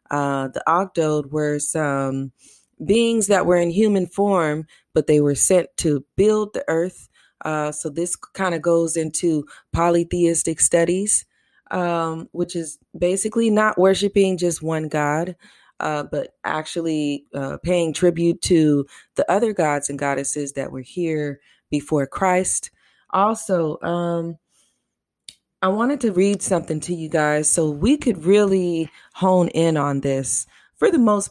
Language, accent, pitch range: English, American, 150-190 Hz